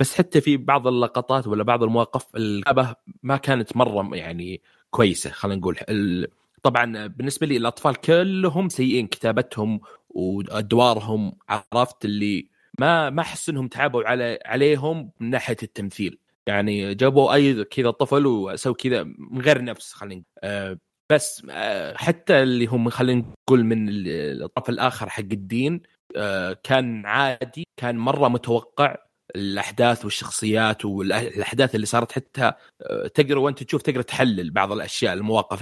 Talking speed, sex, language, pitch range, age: 135 wpm, male, Arabic, 110-140 Hz, 30-49